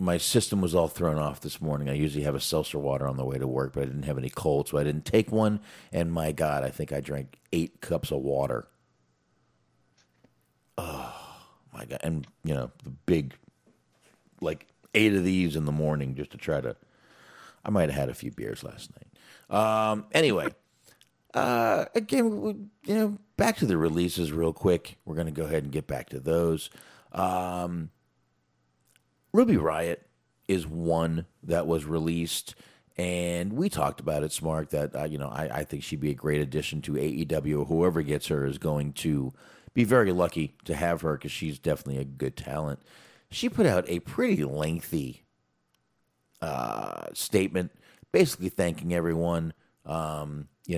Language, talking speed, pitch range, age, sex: English, 175 wpm, 70-85 Hz, 40-59, male